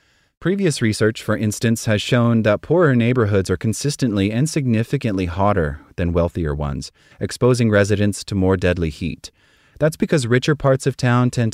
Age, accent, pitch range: 30-49, American, 90-120 Hz